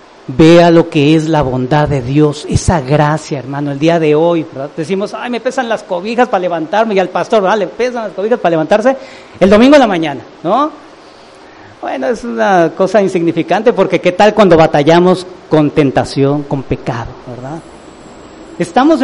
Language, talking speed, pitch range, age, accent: English, 175 wpm, 155-230 Hz, 40-59, Mexican